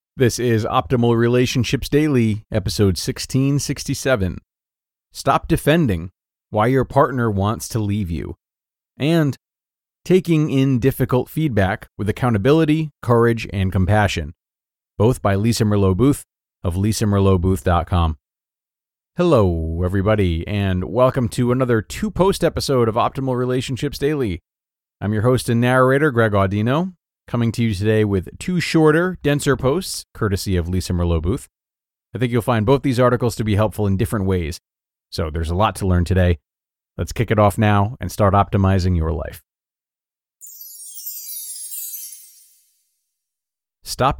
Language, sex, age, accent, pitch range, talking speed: English, male, 30-49, American, 90-130 Hz, 130 wpm